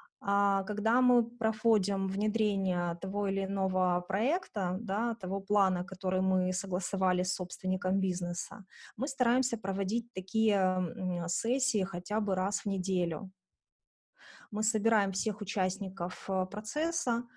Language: Russian